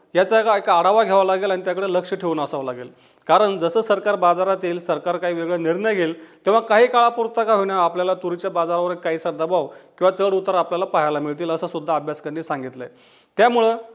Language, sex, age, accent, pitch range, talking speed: Marathi, male, 30-49, native, 170-210 Hz, 185 wpm